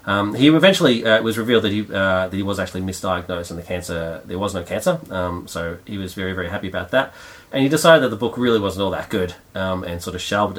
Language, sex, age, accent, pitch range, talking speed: English, male, 30-49, Australian, 90-110 Hz, 260 wpm